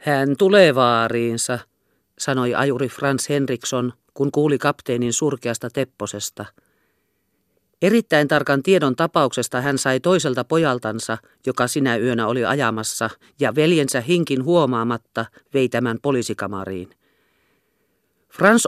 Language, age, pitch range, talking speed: Finnish, 40-59, 120-165 Hz, 105 wpm